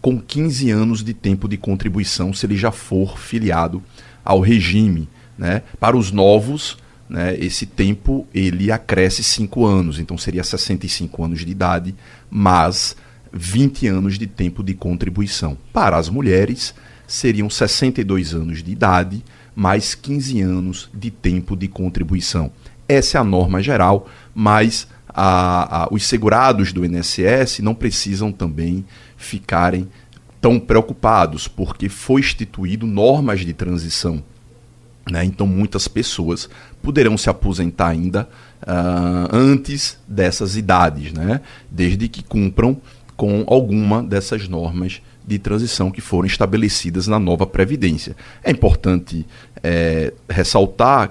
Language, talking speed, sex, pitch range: Portuguese, 125 wpm, male, 90-115 Hz